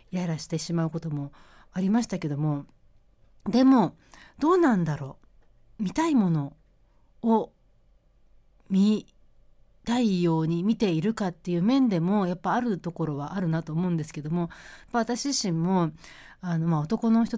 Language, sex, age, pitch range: Japanese, female, 40-59, 160-220 Hz